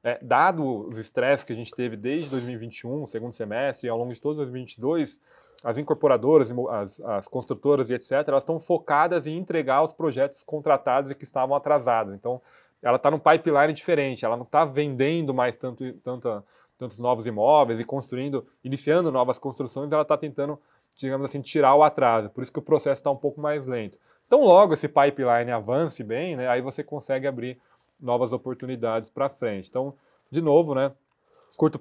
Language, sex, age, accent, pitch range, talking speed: Portuguese, male, 20-39, Brazilian, 115-140 Hz, 180 wpm